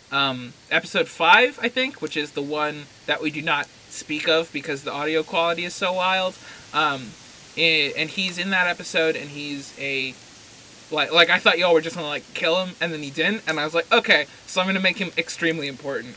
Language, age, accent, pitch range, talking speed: English, 20-39, American, 150-185 Hz, 215 wpm